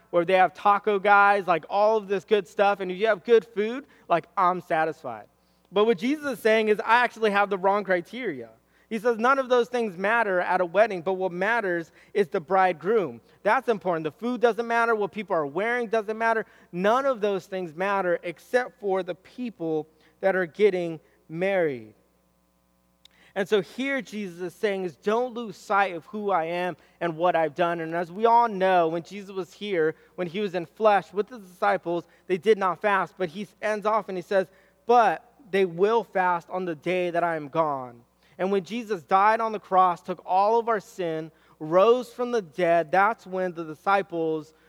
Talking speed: 200 wpm